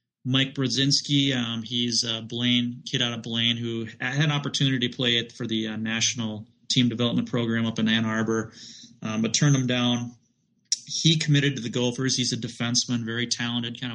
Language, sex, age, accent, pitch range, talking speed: English, male, 30-49, American, 115-125 Hz, 190 wpm